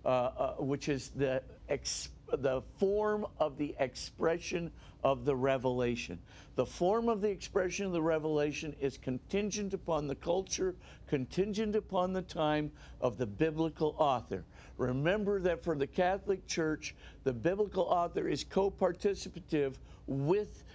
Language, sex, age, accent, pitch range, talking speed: English, male, 50-69, American, 140-185 Hz, 135 wpm